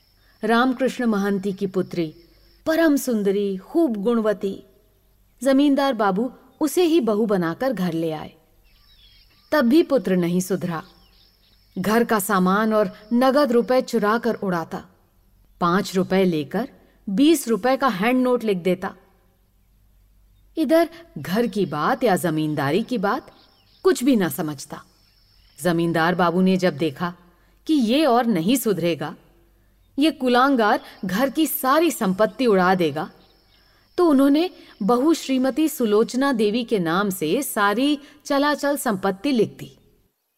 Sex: female